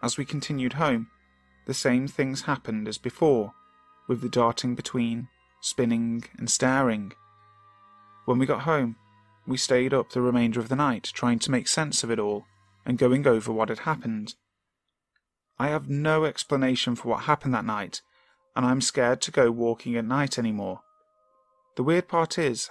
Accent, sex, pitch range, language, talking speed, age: British, male, 120-175 Hz, English, 170 wpm, 30-49